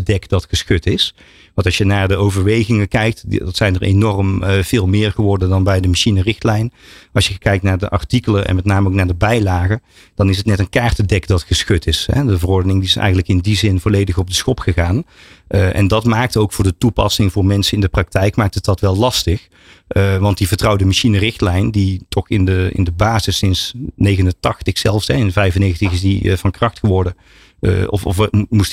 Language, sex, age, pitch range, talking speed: Dutch, male, 40-59, 95-110 Hz, 220 wpm